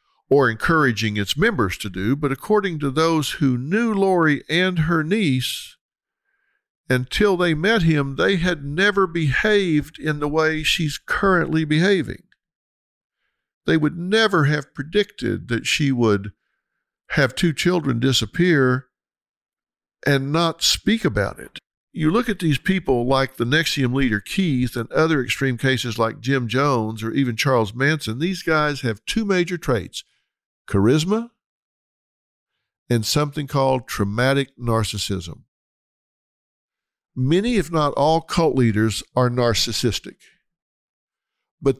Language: English